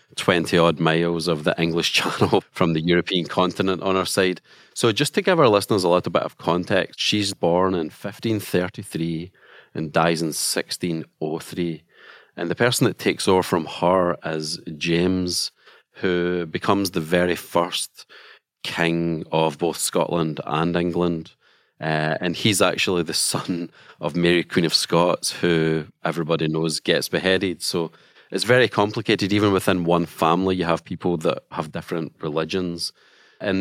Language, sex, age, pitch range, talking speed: English, male, 30-49, 80-95 Hz, 150 wpm